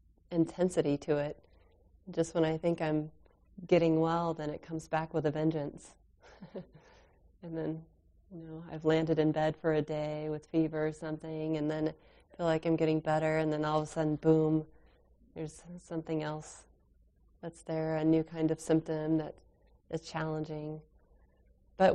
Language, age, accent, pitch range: English, 30-49, American, 155-175 Hz